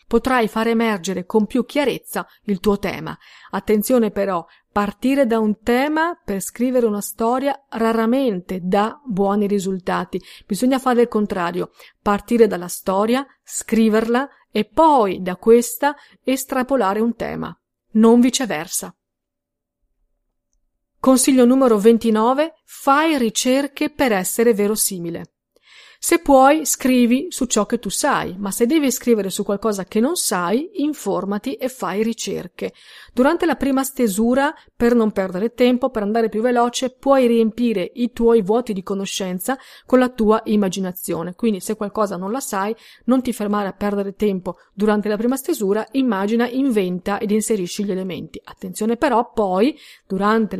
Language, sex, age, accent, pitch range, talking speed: Italian, female, 40-59, native, 205-255 Hz, 140 wpm